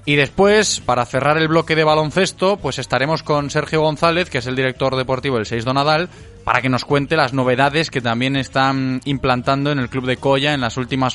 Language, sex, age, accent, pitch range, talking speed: Spanish, male, 20-39, Spanish, 125-160 Hz, 220 wpm